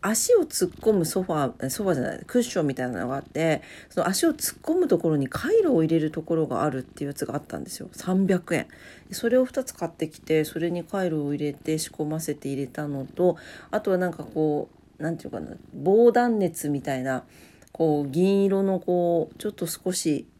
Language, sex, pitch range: Japanese, female, 155-200 Hz